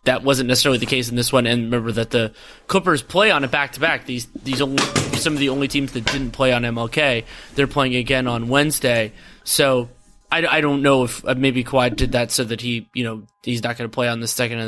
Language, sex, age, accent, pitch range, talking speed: English, male, 20-39, American, 125-150 Hz, 250 wpm